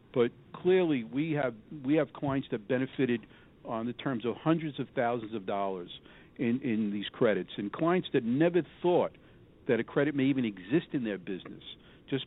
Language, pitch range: English, 115-150 Hz